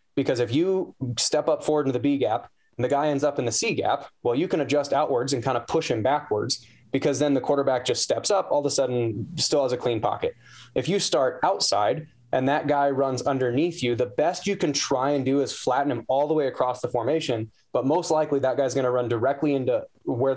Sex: male